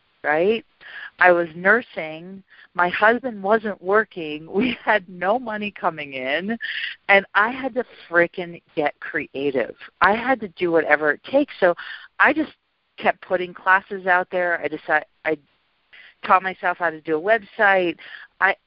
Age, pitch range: 50-69, 170-220 Hz